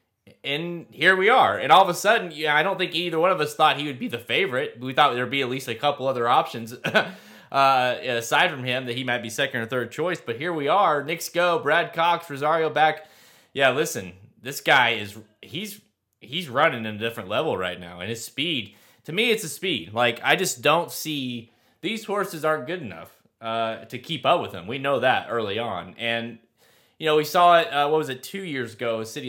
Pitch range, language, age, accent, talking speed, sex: 115-155 Hz, English, 20-39, American, 230 wpm, male